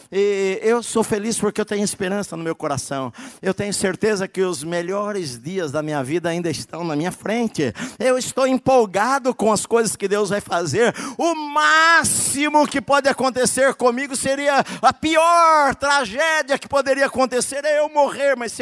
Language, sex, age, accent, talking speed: Portuguese, male, 50-69, Brazilian, 170 wpm